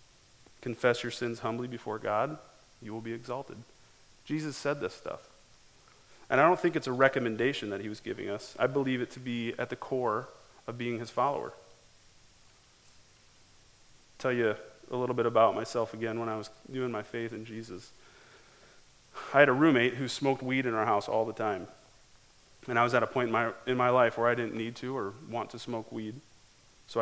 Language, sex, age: English, male, 30-49